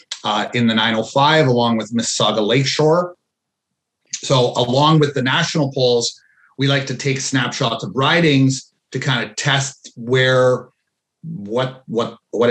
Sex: male